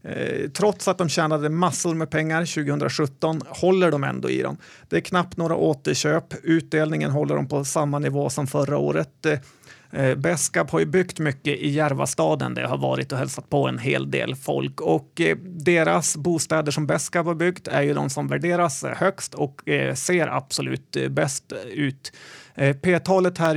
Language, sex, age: Swedish, male, 30-49